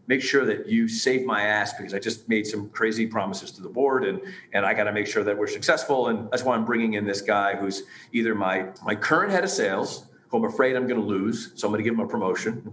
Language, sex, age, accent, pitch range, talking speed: English, male, 40-59, American, 110-140 Hz, 280 wpm